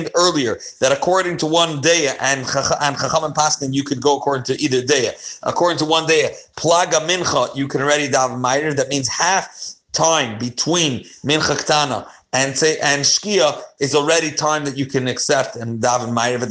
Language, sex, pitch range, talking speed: English, male, 135-175 Hz, 175 wpm